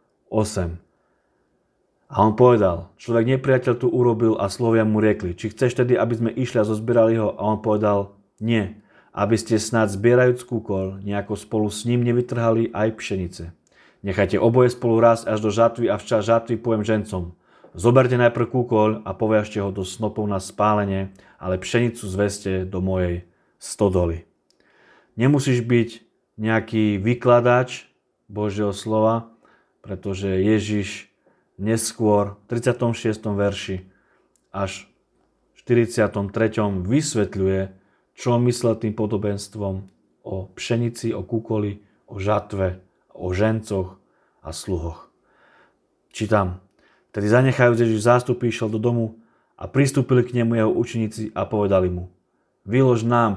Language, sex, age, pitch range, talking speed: Slovak, male, 30-49, 100-115 Hz, 130 wpm